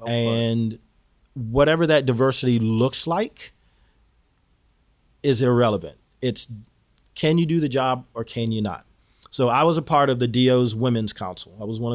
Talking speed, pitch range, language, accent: 155 wpm, 115-135 Hz, English, American